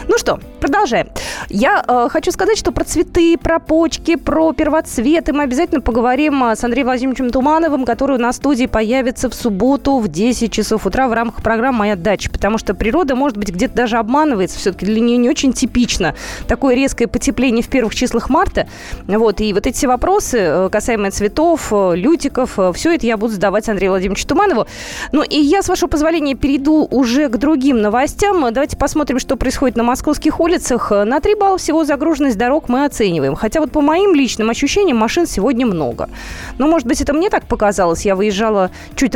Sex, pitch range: female, 230-310 Hz